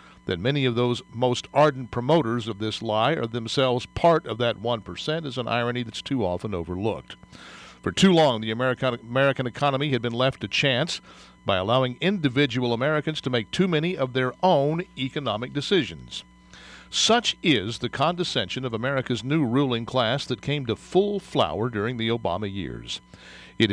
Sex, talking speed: male, 170 wpm